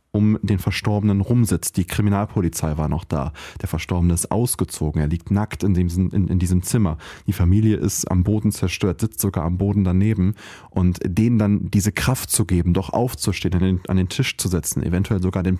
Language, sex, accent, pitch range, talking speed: German, male, German, 90-110 Hz, 200 wpm